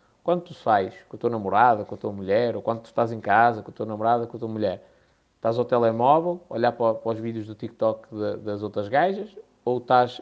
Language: Portuguese